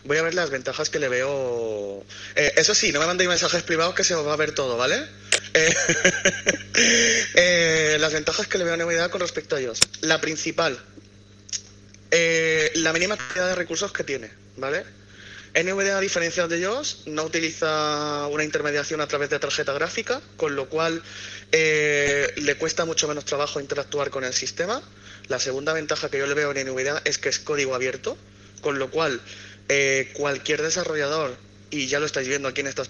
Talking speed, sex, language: 190 wpm, male, Spanish